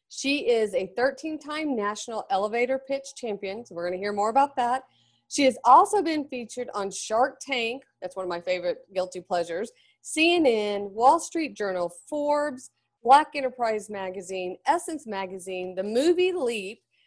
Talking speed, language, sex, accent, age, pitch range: 155 wpm, English, female, American, 30-49, 200-270 Hz